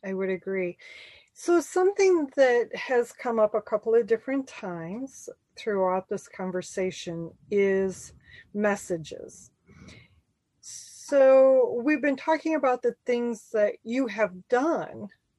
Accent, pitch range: American, 210-275 Hz